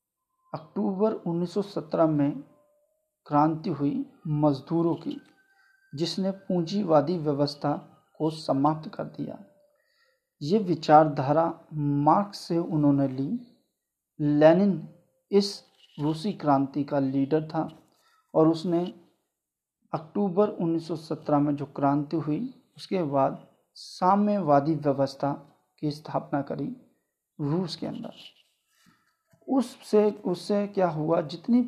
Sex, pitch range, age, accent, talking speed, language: male, 150-200 Hz, 50-69, native, 95 wpm, Hindi